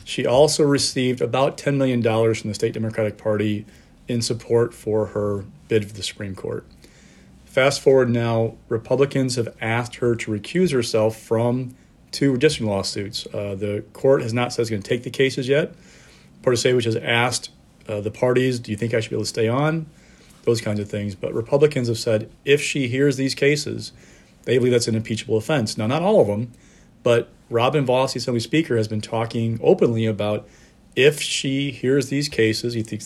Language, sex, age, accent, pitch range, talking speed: English, male, 40-59, American, 110-135 Hz, 190 wpm